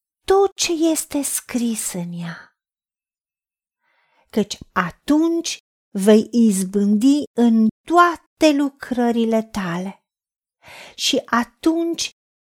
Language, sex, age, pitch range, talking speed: Romanian, female, 40-59, 220-285 Hz, 75 wpm